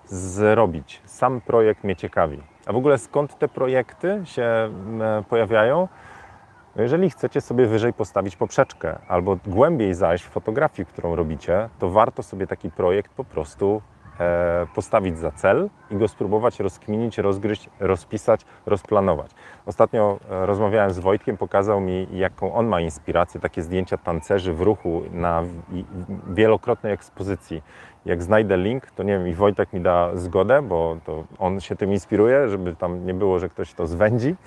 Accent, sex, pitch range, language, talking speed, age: native, male, 90-115 Hz, Polish, 150 wpm, 40-59